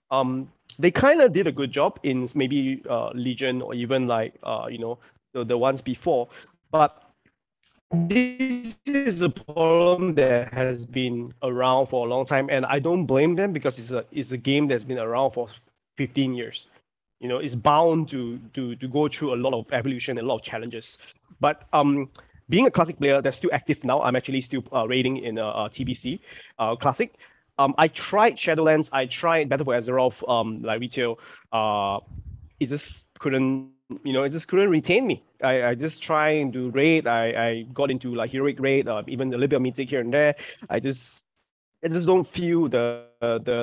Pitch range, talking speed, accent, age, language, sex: 125-150 Hz, 205 wpm, Malaysian, 20-39, English, male